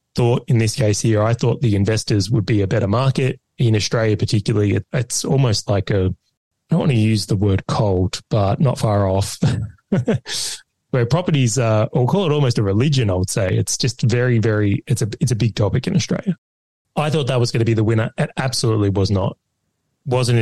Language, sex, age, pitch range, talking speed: English, male, 20-39, 105-130 Hz, 215 wpm